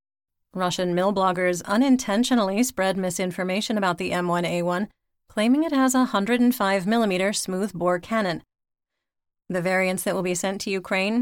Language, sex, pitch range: English, female, 180-210 Hz